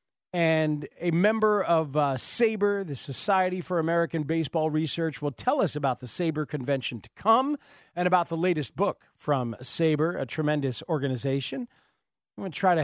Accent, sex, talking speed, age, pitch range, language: American, male, 170 wpm, 40-59, 145-195 Hz, English